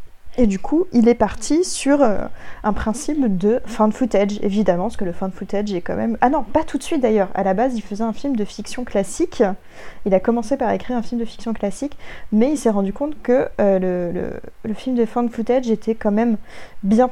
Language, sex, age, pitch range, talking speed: French, female, 20-39, 200-250 Hz, 230 wpm